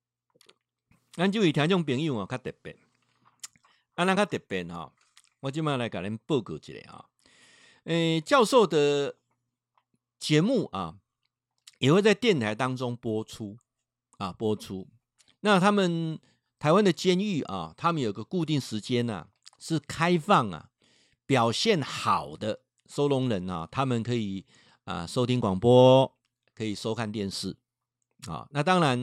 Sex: male